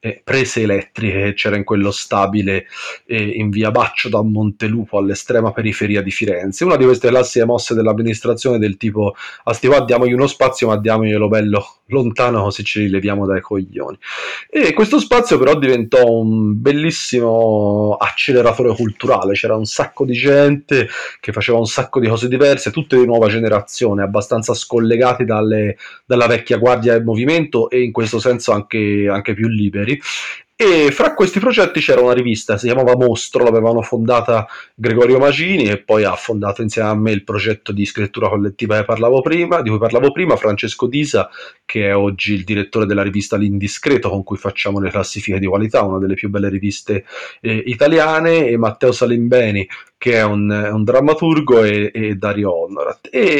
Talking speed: 170 wpm